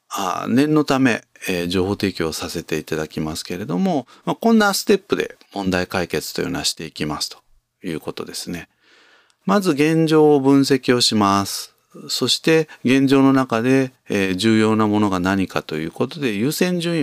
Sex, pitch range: male, 95-155 Hz